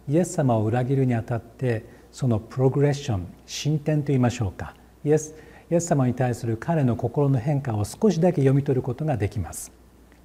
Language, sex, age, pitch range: Japanese, male, 40-59, 115-155 Hz